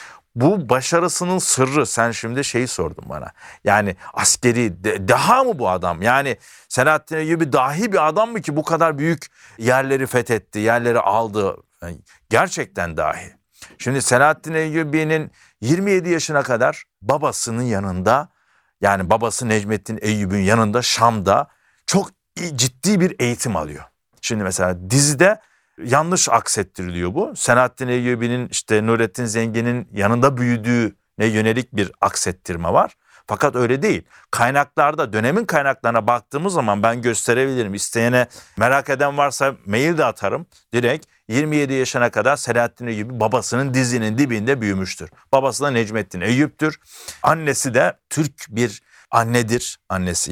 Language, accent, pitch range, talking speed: Turkish, native, 110-145 Hz, 125 wpm